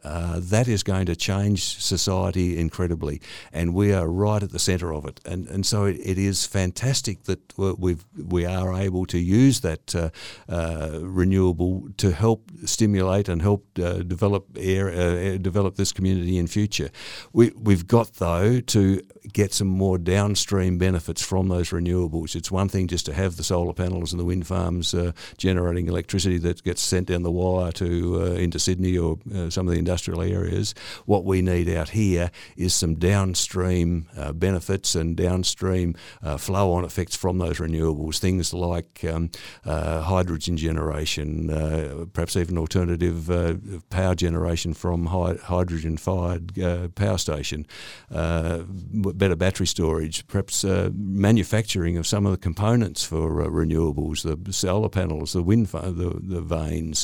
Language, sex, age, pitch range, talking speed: English, male, 60-79, 85-95 Hz, 165 wpm